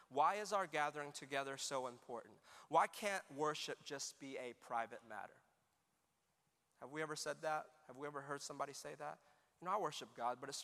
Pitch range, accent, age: 130-195 Hz, American, 30-49